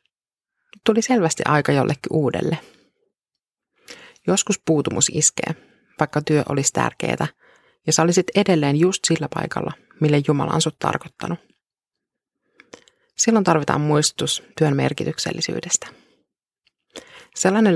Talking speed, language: 100 wpm, Finnish